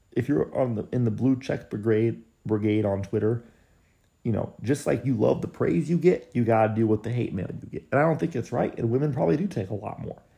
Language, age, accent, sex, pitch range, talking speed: English, 30-49, American, male, 105-140 Hz, 260 wpm